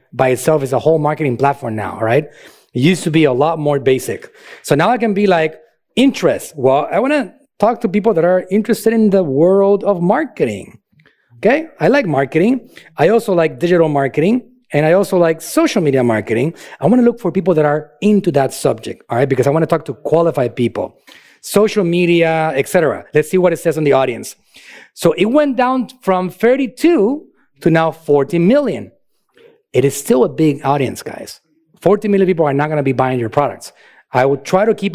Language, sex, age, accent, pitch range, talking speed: English, male, 30-49, Mexican, 140-195 Hz, 210 wpm